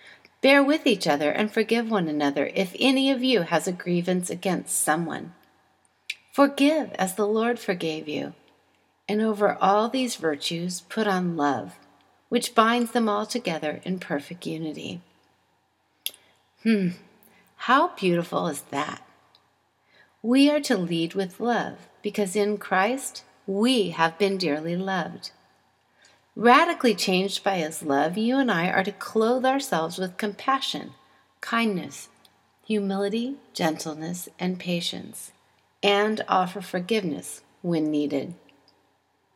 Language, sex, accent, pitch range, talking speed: English, female, American, 170-235 Hz, 125 wpm